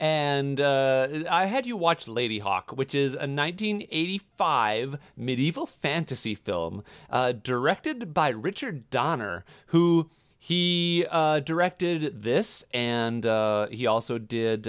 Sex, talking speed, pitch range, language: male, 125 wpm, 115-165 Hz, English